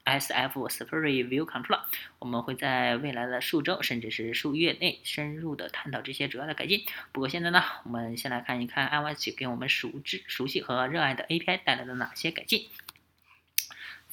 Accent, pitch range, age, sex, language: native, 125-170 Hz, 20-39, female, Chinese